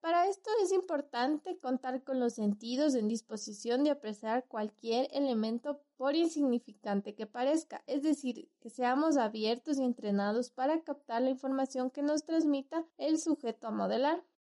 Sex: female